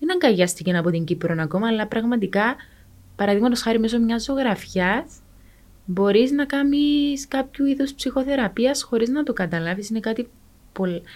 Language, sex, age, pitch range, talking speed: Greek, female, 20-39, 175-235 Hz, 145 wpm